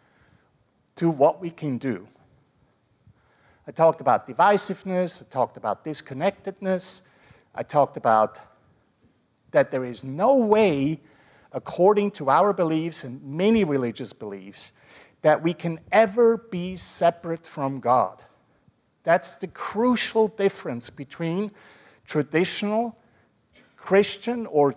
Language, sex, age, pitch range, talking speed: English, male, 50-69, 135-190 Hz, 110 wpm